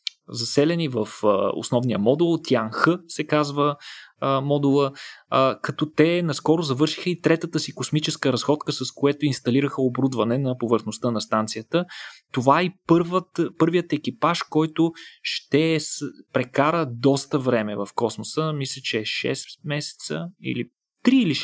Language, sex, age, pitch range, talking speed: Bulgarian, male, 20-39, 125-165 Hz, 125 wpm